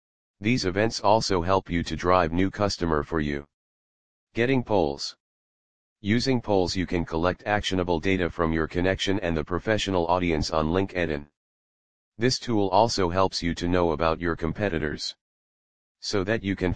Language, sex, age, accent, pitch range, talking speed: English, male, 30-49, American, 80-95 Hz, 155 wpm